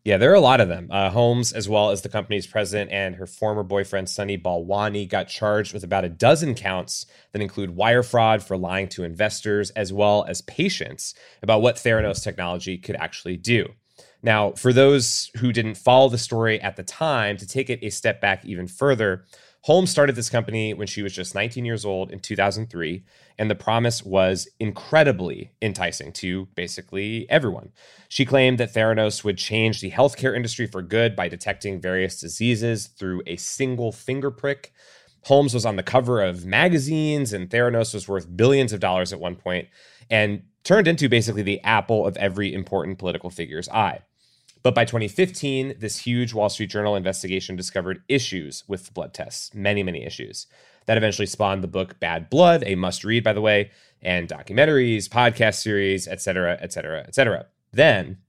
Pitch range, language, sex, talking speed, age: 95-120 Hz, English, male, 185 wpm, 30-49